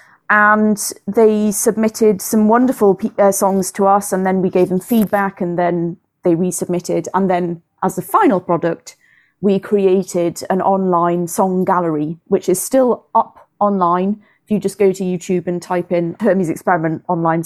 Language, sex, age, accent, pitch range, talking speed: English, female, 30-49, British, 175-205 Hz, 165 wpm